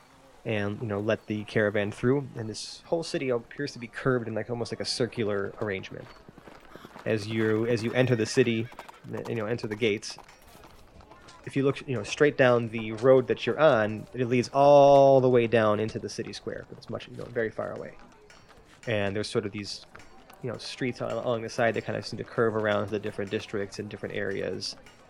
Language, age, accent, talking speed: English, 20-39, American, 210 wpm